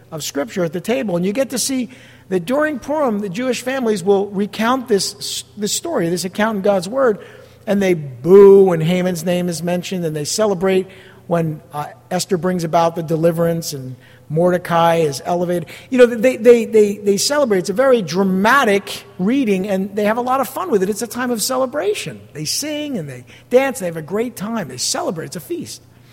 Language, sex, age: English, male, 50-69